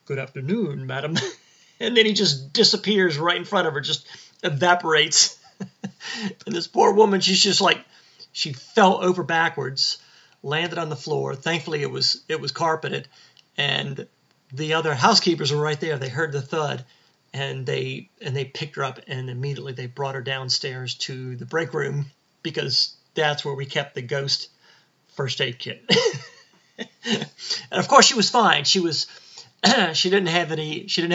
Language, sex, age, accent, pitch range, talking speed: English, male, 40-59, American, 135-175 Hz, 170 wpm